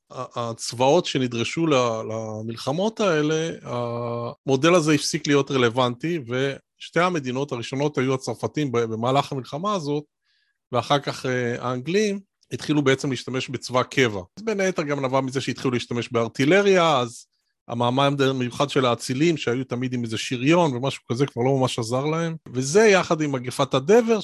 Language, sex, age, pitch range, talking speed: Hebrew, male, 30-49, 120-150 Hz, 140 wpm